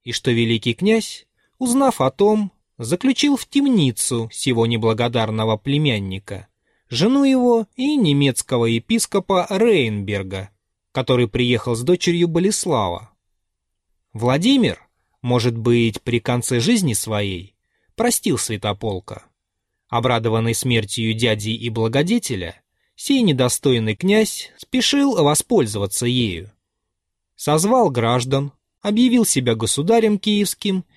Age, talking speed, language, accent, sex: 20-39, 95 wpm, Russian, native, male